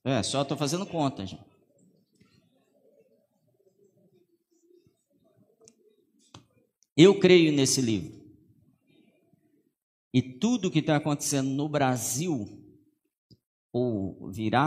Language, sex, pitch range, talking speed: Portuguese, male, 115-160 Hz, 80 wpm